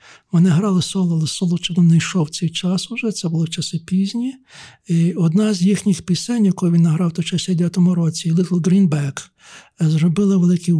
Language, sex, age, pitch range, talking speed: Ukrainian, male, 60-79, 160-185 Hz, 170 wpm